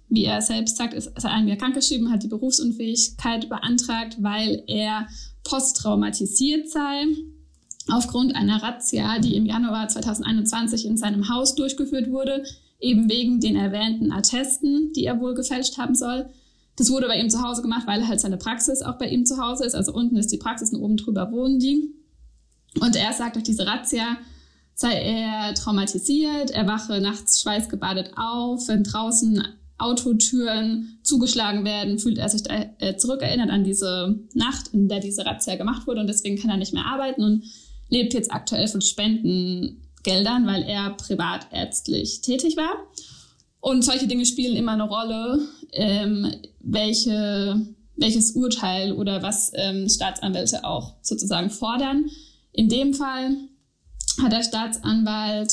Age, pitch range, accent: 10-29, 210-255 Hz, German